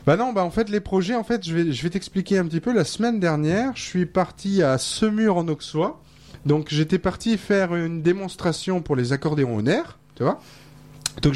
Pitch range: 125-165 Hz